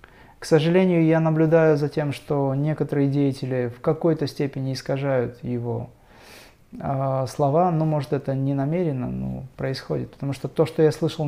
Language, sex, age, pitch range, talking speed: Russian, male, 20-39, 130-160 Hz, 160 wpm